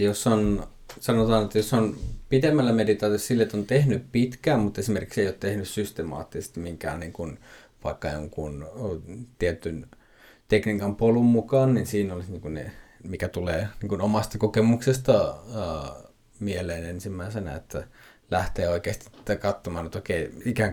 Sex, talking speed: male, 140 wpm